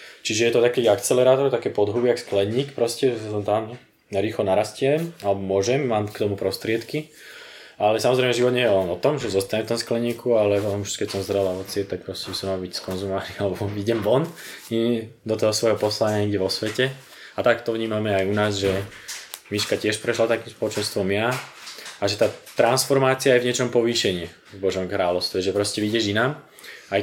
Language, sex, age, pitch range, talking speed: Czech, male, 20-39, 100-115 Hz, 195 wpm